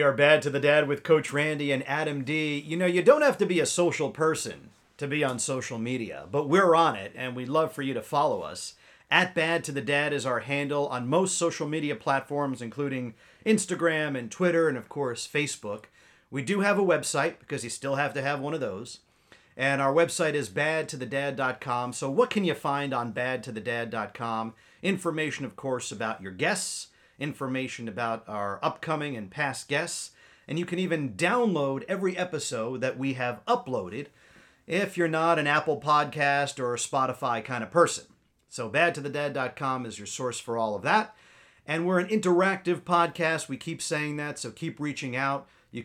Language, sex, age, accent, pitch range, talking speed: English, male, 40-59, American, 130-165 Hz, 195 wpm